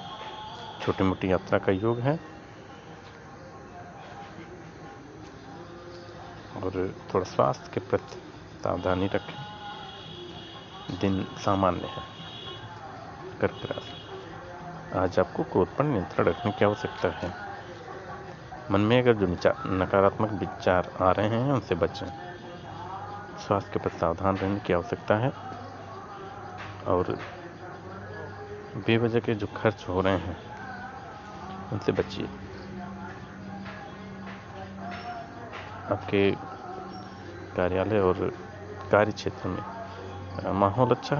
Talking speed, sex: 95 wpm, male